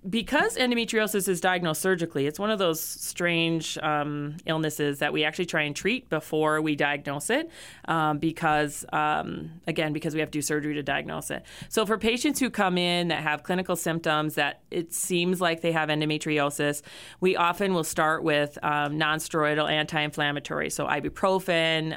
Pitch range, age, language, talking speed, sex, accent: 150-170 Hz, 30-49, English, 170 wpm, female, American